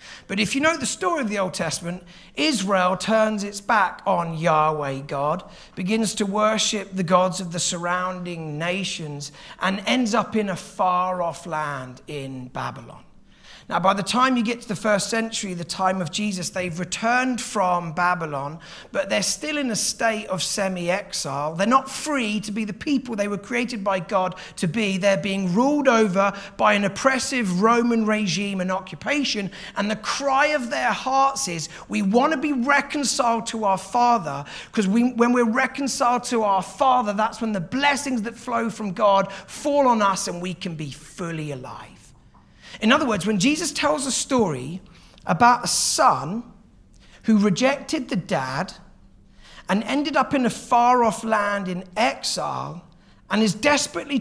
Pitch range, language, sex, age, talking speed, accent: 170-235 Hz, English, male, 40-59, 170 wpm, British